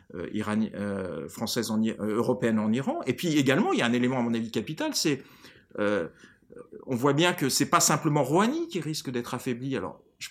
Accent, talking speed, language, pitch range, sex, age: French, 220 wpm, French, 115-145 Hz, male, 40-59